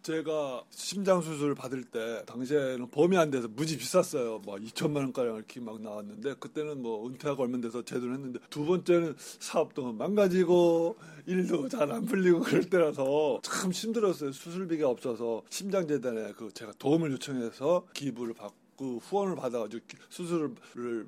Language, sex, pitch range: Korean, male, 125-180 Hz